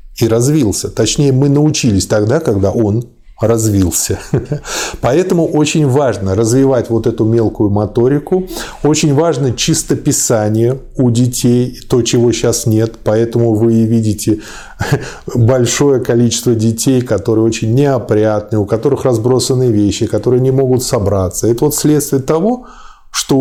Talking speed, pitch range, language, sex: 125 wpm, 110-140 Hz, Russian, male